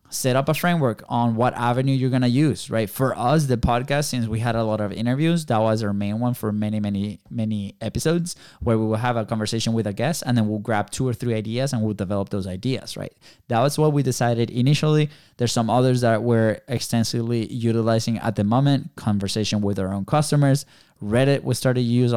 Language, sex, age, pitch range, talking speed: English, male, 20-39, 110-135 Hz, 220 wpm